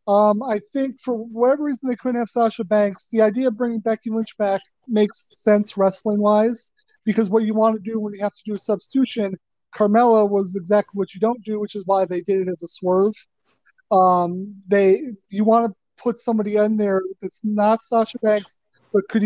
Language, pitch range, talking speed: English, 190-225 Hz, 205 wpm